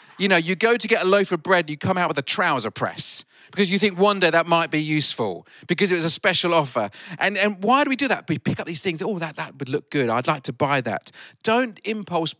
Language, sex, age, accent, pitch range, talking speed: English, male, 40-59, British, 135-185 Hz, 280 wpm